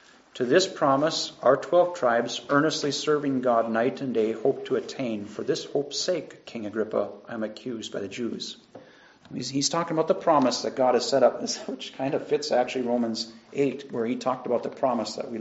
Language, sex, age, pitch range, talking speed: English, male, 40-59, 125-155 Hz, 205 wpm